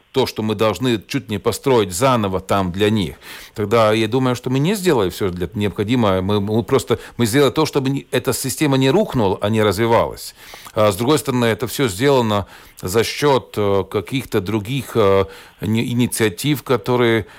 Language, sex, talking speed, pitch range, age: Russian, male, 150 wpm, 105-130 Hz, 40-59